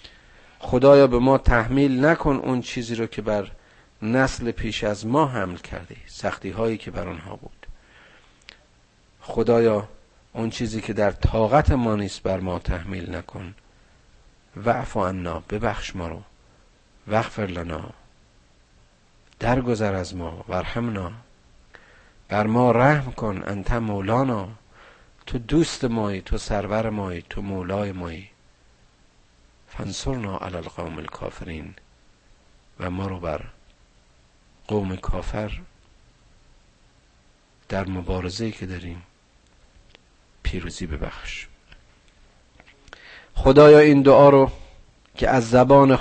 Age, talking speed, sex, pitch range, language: 50-69, 105 wpm, male, 90-120 Hz, Persian